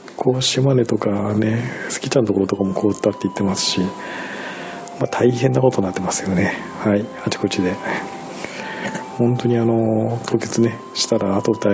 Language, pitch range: Japanese, 100-120 Hz